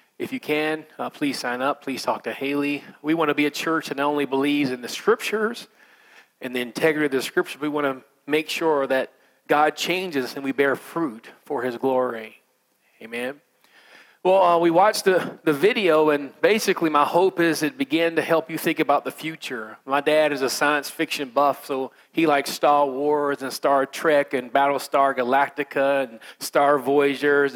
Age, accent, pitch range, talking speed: 40-59, American, 140-180 Hz, 195 wpm